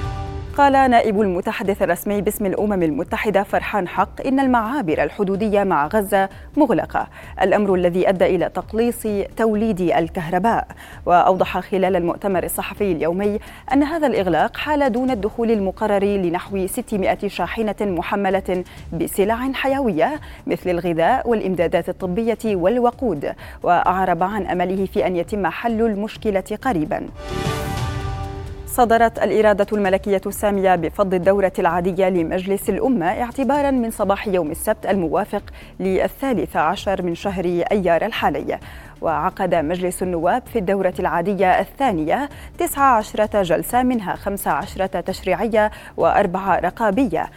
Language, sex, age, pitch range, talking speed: Arabic, female, 20-39, 185-230 Hz, 115 wpm